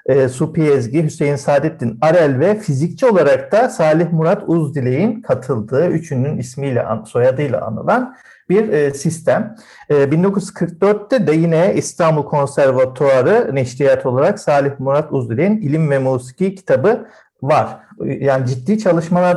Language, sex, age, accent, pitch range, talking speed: Turkish, male, 50-69, native, 125-170 Hz, 115 wpm